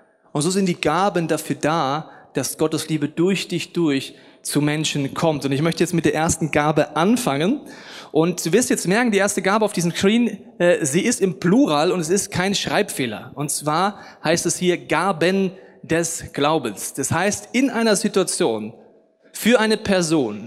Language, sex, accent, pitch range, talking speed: German, male, German, 140-185 Hz, 180 wpm